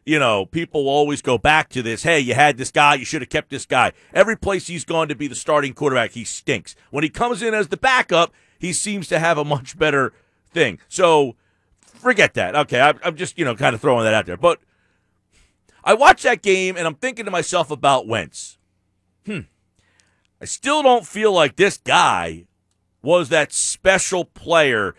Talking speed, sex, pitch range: 200 wpm, male, 120-180 Hz